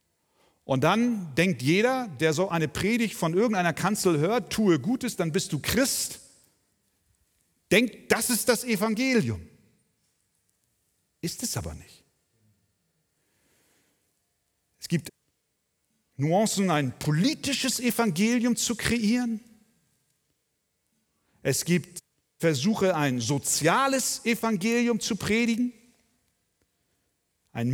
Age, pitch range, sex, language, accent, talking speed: 50-69, 160-230 Hz, male, German, German, 95 wpm